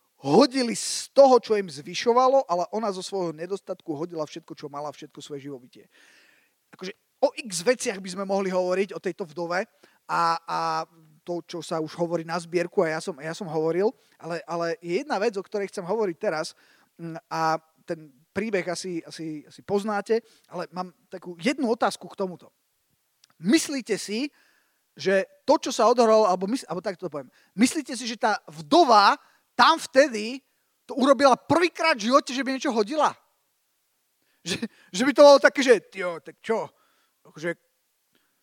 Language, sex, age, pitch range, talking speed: Slovak, male, 30-49, 170-235 Hz, 160 wpm